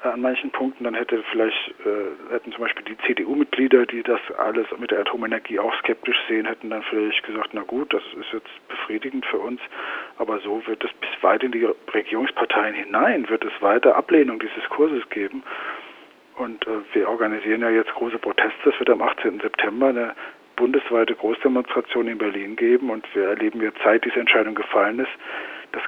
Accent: German